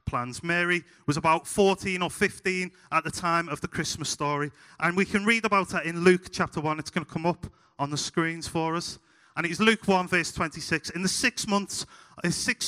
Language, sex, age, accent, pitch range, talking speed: English, male, 30-49, British, 130-180 Hz, 220 wpm